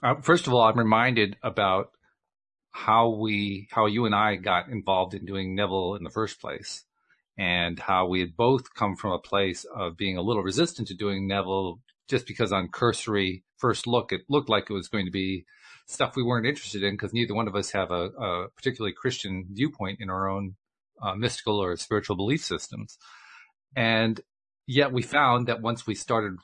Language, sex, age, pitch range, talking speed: English, male, 40-59, 95-125 Hz, 195 wpm